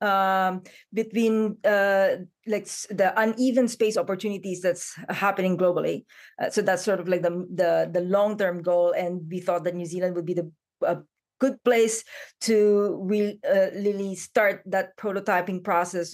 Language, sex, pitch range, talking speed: English, female, 180-215 Hz, 160 wpm